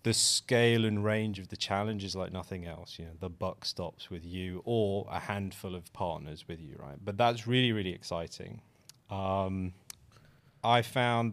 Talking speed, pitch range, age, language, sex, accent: 180 wpm, 95-115 Hz, 30-49, English, male, British